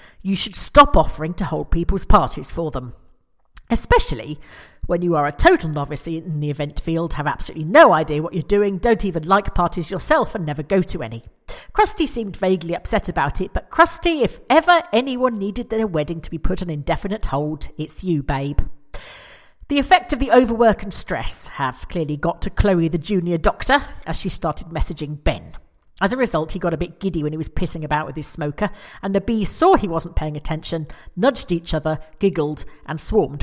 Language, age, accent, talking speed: English, 40-59, British, 200 wpm